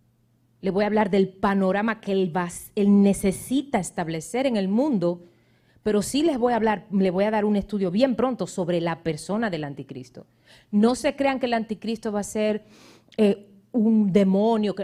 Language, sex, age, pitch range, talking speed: Spanish, female, 30-49, 160-225 Hz, 185 wpm